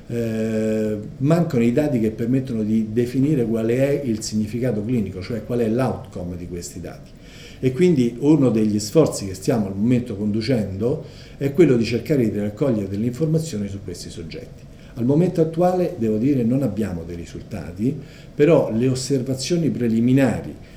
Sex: male